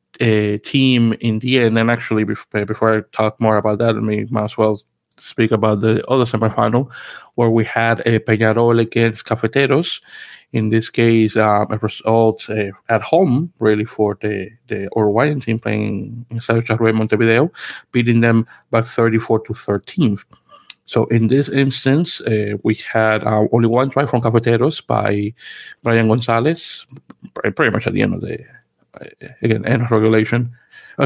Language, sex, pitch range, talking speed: English, male, 110-120 Hz, 155 wpm